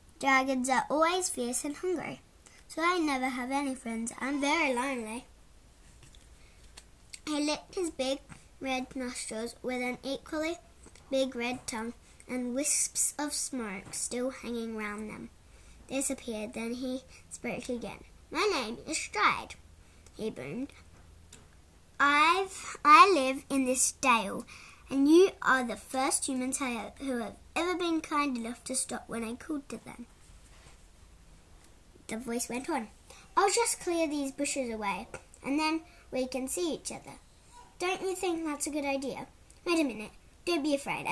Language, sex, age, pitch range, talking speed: English, male, 10-29, 235-290 Hz, 145 wpm